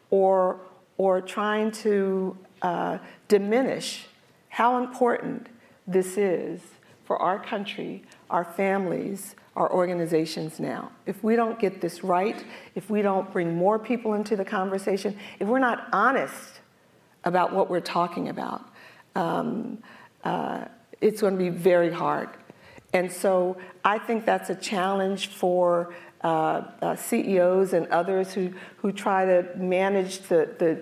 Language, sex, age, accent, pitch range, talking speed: English, female, 50-69, American, 175-205 Hz, 135 wpm